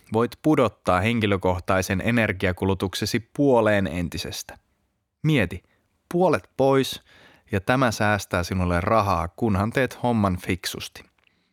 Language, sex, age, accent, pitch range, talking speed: Finnish, male, 30-49, native, 95-115 Hz, 95 wpm